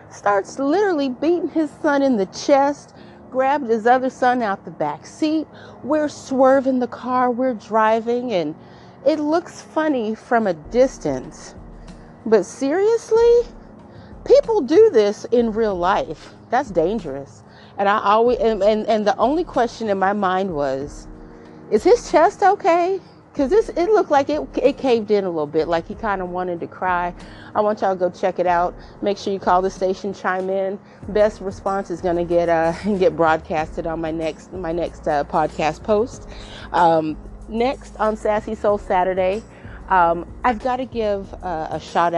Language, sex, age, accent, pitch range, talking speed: English, female, 40-59, American, 165-255 Hz, 175 wpm